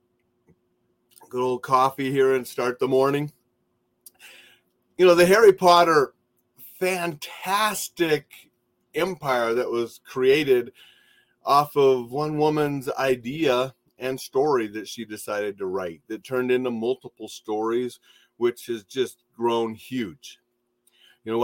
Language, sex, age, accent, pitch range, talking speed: English, male, 40-59, American, 115-130 Hz, 120 wpm